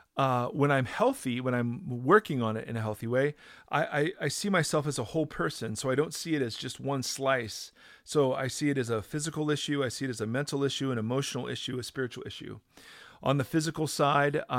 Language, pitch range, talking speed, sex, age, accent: English, 115-140 Hz, 230 wpm, male, 40-59, American